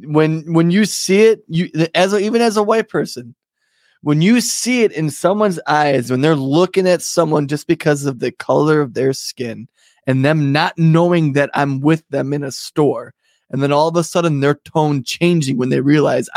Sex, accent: male, American